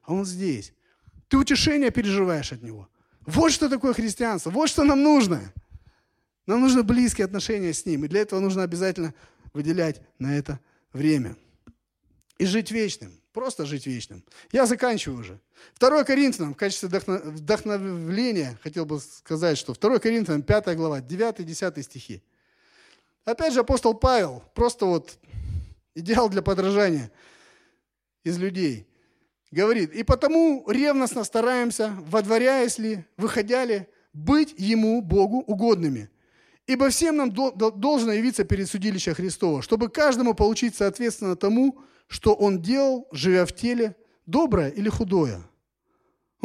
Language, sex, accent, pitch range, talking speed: Russian, male, native, 160-250 Hz, 135 wpm